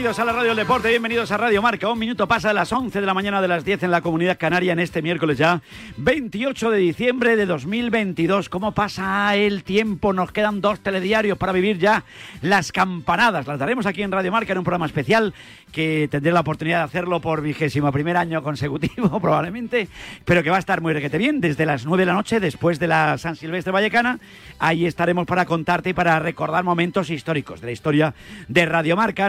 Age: 40-59